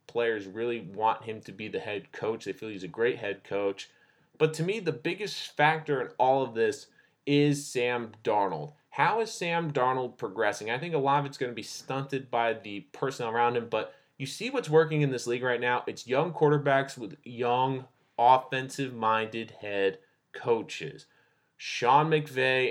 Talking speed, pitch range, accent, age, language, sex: 185 wpm, 120-150 Hz, American, 20-39, English, male